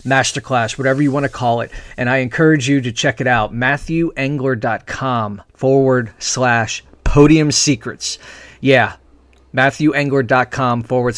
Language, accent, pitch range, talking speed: English, American, 115-140 Hz, 125 wpm